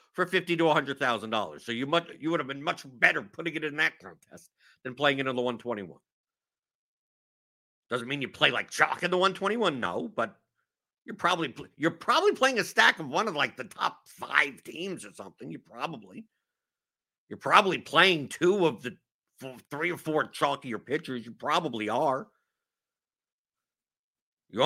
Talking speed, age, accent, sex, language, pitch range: 185 wpm, 50-69, American, male, English, 140-185 Hz